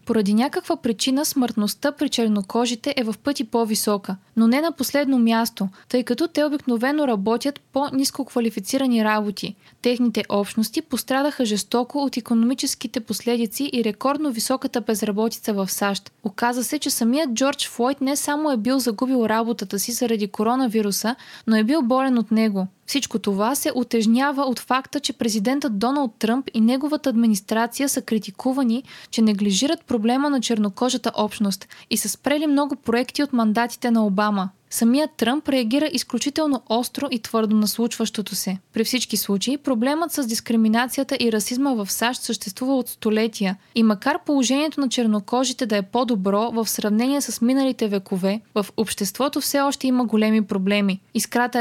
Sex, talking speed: female, 150 wpm